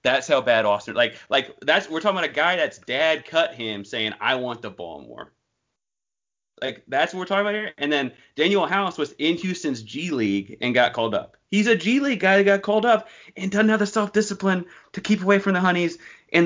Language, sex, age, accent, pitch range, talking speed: English, male, 30-49, American, 110-165 Hz, 220 wpm